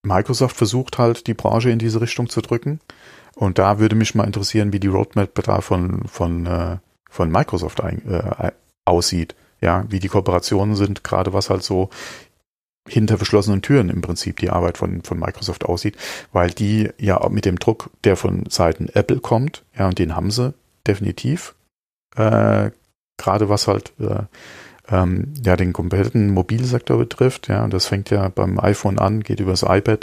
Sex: male